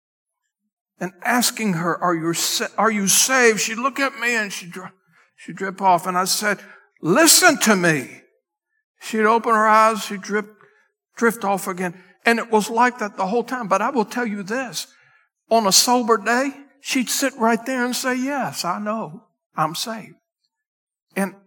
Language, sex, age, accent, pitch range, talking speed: English, male, 60-79, American, 195-250 Hz, 175 wpm